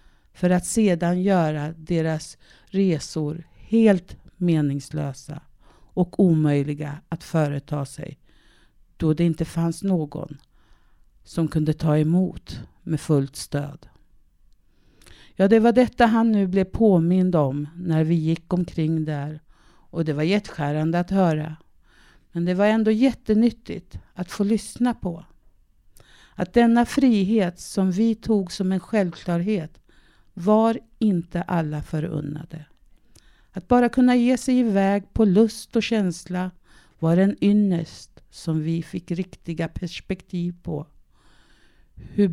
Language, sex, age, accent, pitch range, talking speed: Swedish, female, 50-69, native, 155-205 Hz, 125 wpm